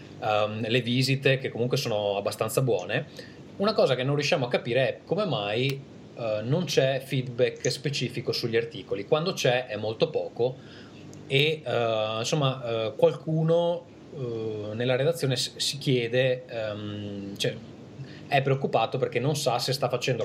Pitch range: 110-140 Hz